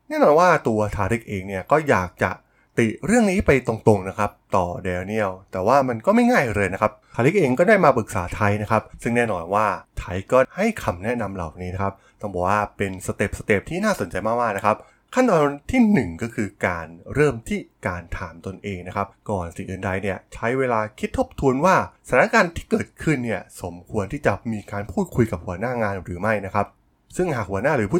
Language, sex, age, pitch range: Thai, male, 20-39, 95-120 Hz